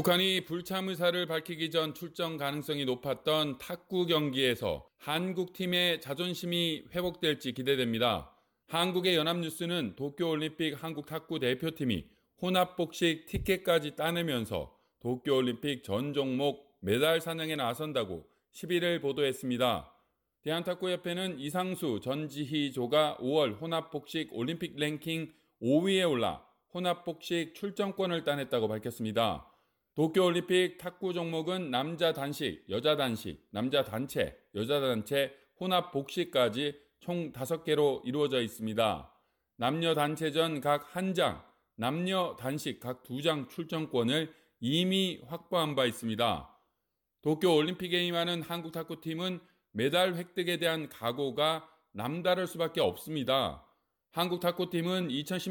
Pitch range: 140-175 Hz